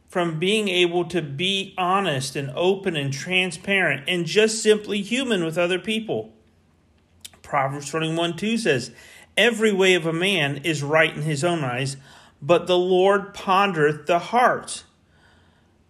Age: 40-59